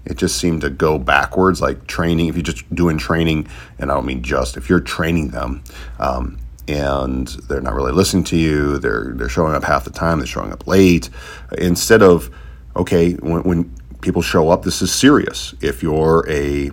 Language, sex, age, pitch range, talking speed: English, male, 40-59, 65-90 Hz, 195 wpm